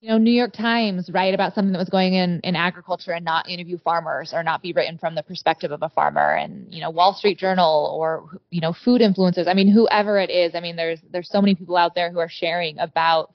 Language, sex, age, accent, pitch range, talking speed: English, female, 20-39, American, 165-190 Hz, 255 wpm